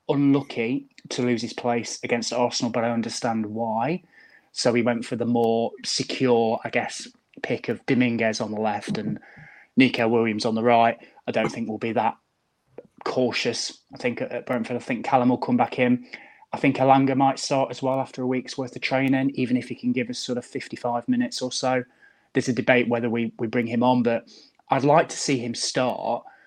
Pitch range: 115-130 Hz